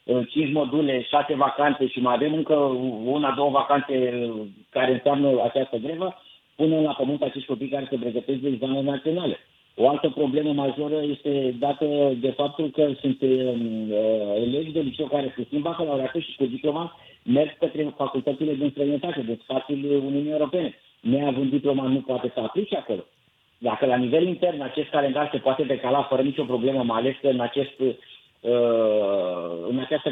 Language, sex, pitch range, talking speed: Romanian, male, 125-150 Hz, 175 wpm